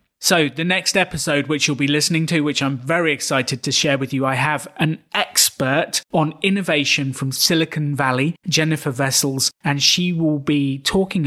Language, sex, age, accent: English, male, 30-49, British